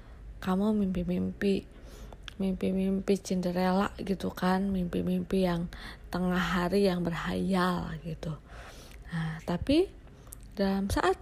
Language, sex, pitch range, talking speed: Indonesian, female, 175-245 Hz, 90 wpm